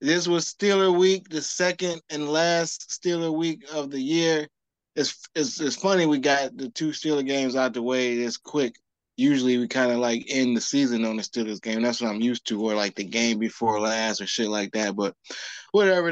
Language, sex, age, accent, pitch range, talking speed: English, male, 20-39, American, 125-150 Hz, 210 wpm